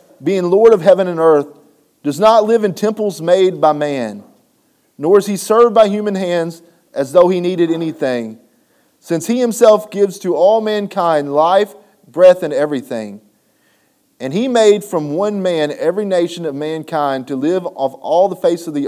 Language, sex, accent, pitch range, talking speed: English, male, American, 150-205 Hz, 175 wpm